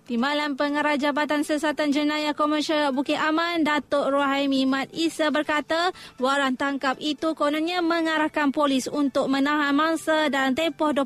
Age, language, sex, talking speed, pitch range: 20-39, Malay, female, 130 wpm, 270-310 Hz